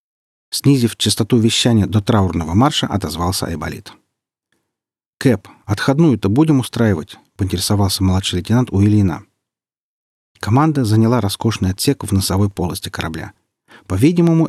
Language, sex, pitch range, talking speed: Russian, male, 95-130 Hz, 105 wpm